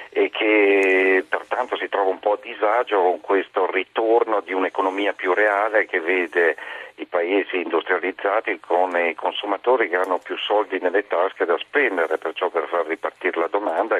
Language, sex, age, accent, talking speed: Italian, male, 50-69, native, 165 wpm